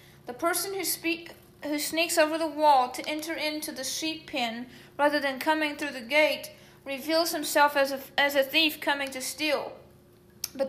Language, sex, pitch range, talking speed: English, female, 285-330 Hz, 180 wpm